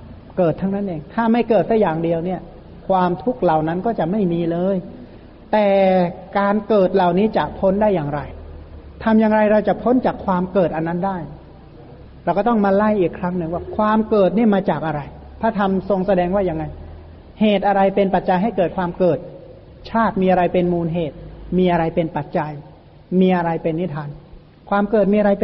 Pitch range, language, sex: 165-200 Hz, Thai, male